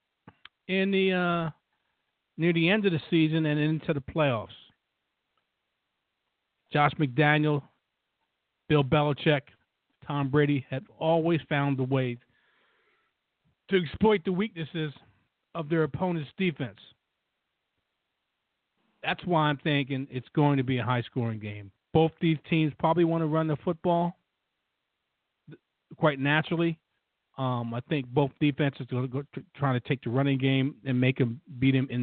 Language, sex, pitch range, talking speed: English, male, 125-160 Hz, 145 wpm